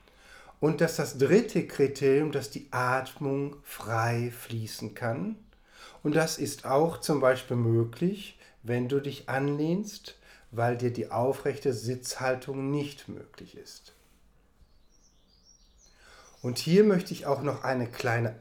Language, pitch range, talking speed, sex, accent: German, 125-165 Hz, 125 wpm, male, German